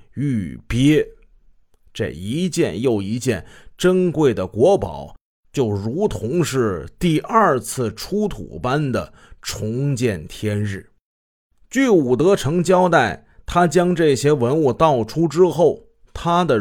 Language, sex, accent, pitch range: Chinese, male, native, 105-160 Hz